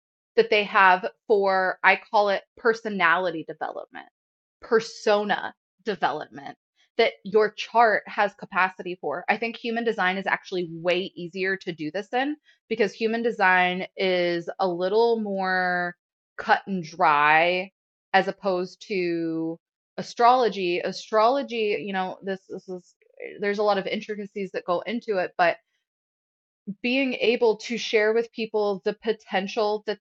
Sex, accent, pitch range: female, American, 180-225 Hz